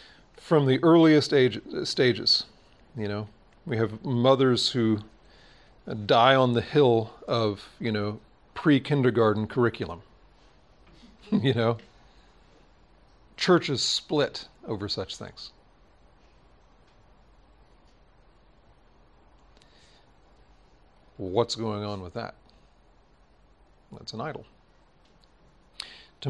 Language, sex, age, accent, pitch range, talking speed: English, male, 40-59, American, 105-130 Hz, 80 wpm